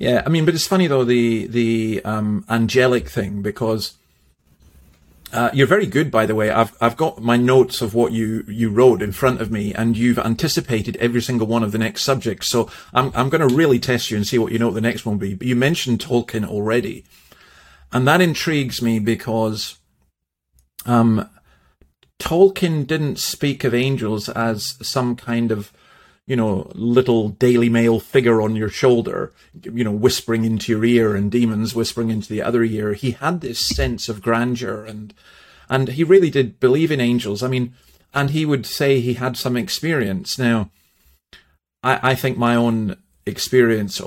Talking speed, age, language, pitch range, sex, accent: 185 wpm, 30-49, English, 110-125 Hz, male, British